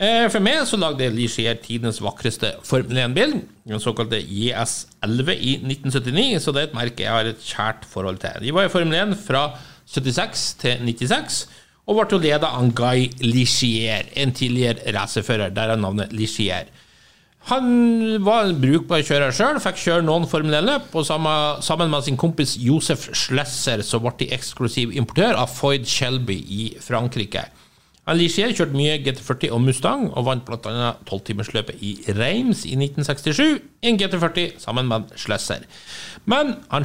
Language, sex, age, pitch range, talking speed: English, male, 60-79, 115-155 Hz, 165 wpm